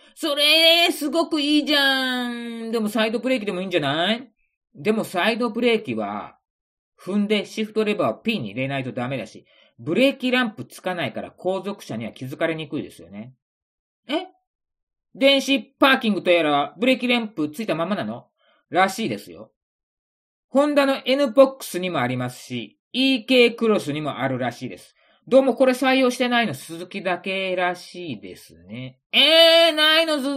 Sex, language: male, Japanese